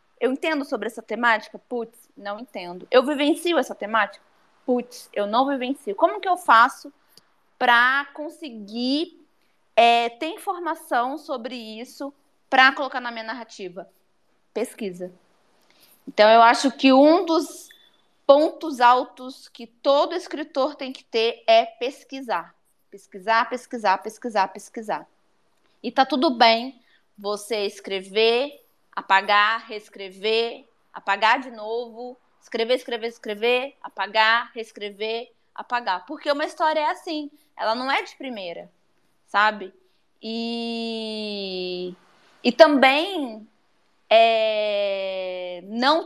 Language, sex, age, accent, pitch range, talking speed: Portuguese, female, 20-39, Brazilian, 220-285 Hz, 110 wpm